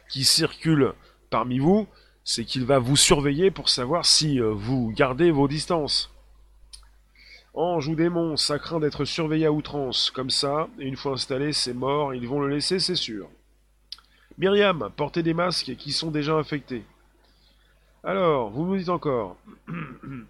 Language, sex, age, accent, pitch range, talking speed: French, male, 30-49, French, 130-175 Hz, 150 wpm